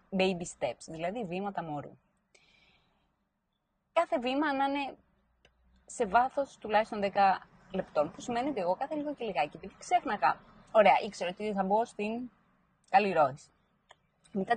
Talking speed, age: 130 wpm, 20-39